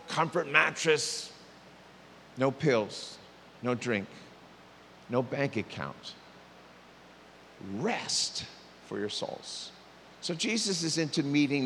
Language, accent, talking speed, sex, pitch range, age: English, American, 95 wpm, male, 115-170 Hz, 50-69